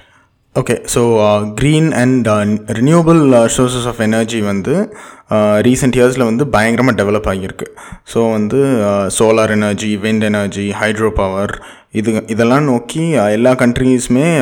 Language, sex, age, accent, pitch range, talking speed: Tamil, male, 20-39, native, 110-125 Hz, 115 wpm